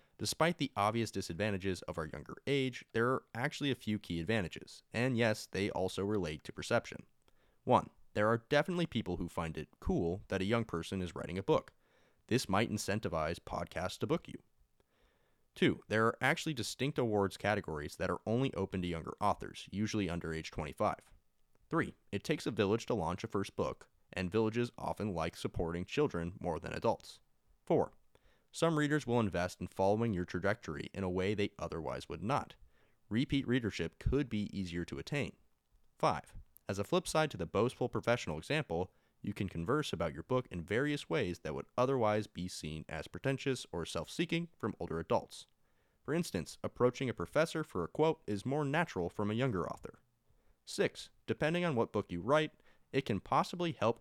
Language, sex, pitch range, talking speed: English, male, 90-130 Hz, 180 wpm